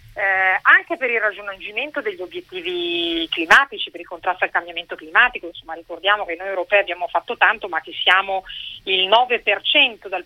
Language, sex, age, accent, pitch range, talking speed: Italian, female, 30-49, native, 185-250 Hz, 165 wpm